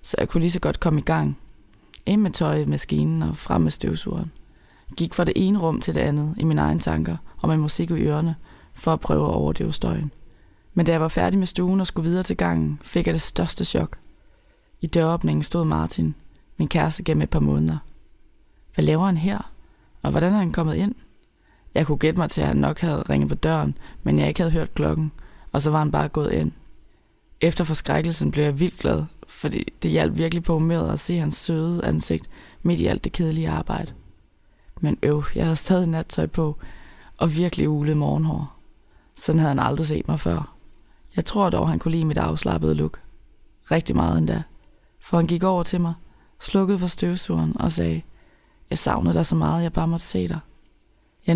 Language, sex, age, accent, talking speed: Danish, female, 20-39, native, 205 wpm